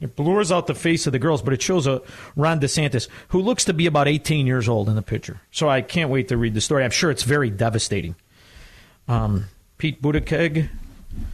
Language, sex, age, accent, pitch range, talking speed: English, male, 50-69, American, 110-160 Hz, 215 wpm